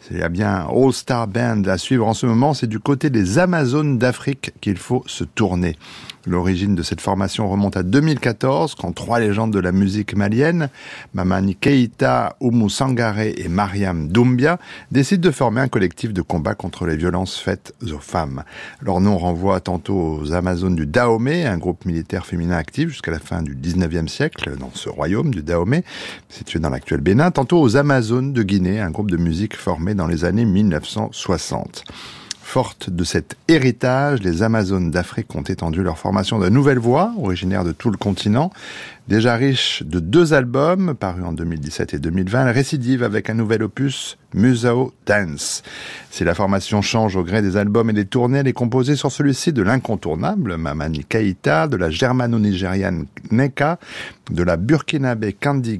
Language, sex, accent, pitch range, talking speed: French, male, French, 90-130 Hz, 175 wpm